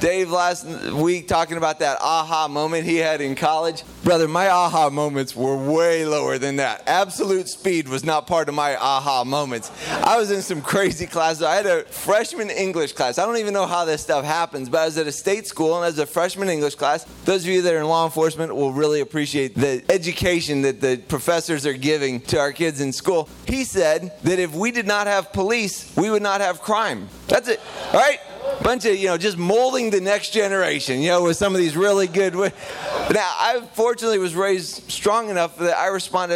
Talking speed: 220 wpm